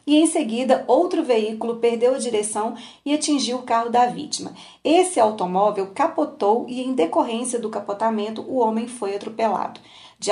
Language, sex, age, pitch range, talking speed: Portuguese, female, 30-49, 210-255 Hz, 155 wpm